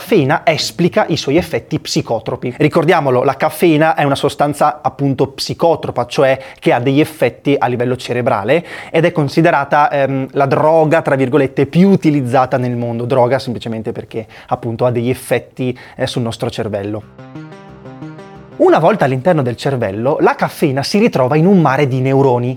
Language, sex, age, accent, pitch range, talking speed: Italian, male, 20-39, native, 125-175 Hz, 160 wpm